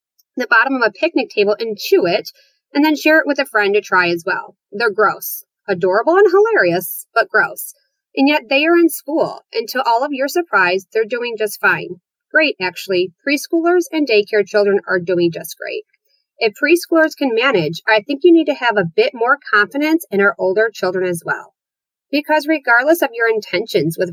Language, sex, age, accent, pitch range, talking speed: English, female, 30-49, American, 200-305 Hz, 195 wpm